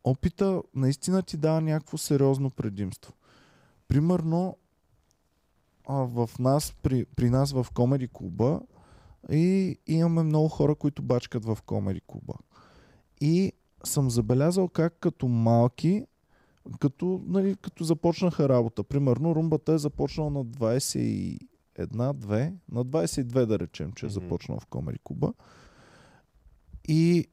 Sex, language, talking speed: male, Bulgarian, 110 wpm